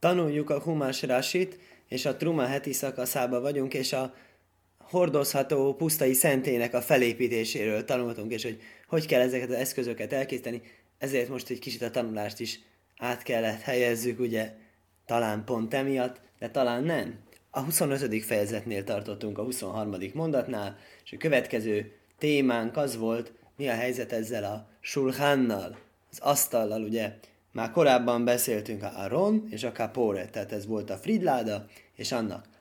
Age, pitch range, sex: 20-39, 110-135 Hz, male